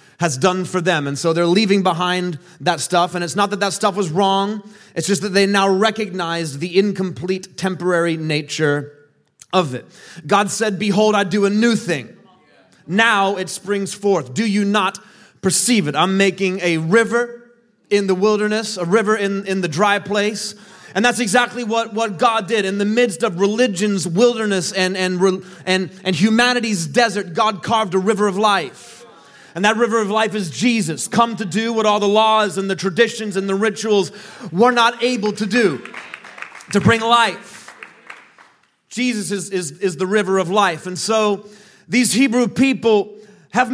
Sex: male